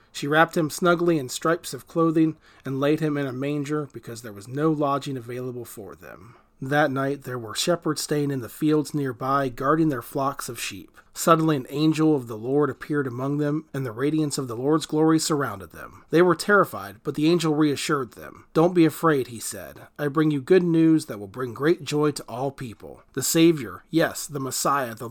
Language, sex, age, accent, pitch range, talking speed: English, male, 40-59, American, 135-160 Hz, 210 wpm